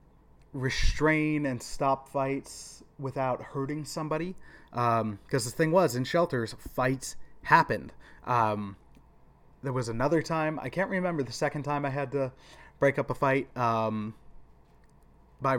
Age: 20-39